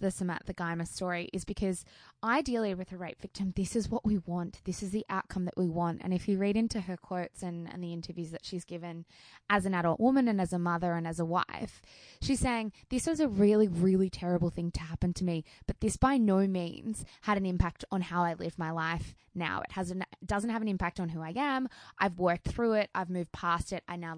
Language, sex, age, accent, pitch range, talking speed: English, female, 20-39, Australian, 175-210 Hz, 240 wpm